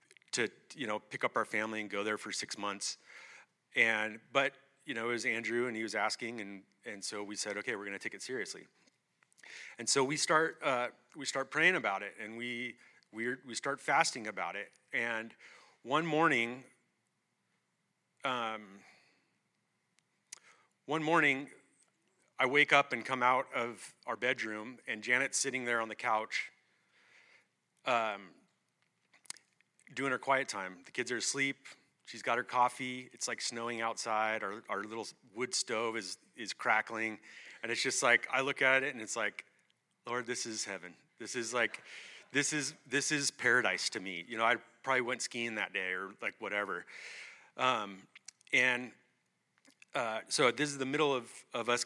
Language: English